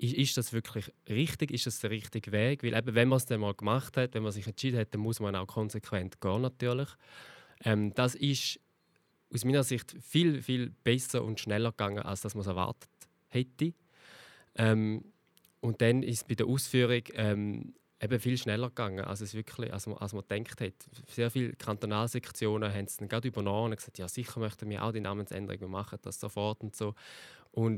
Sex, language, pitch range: male, German, 105-120 Hz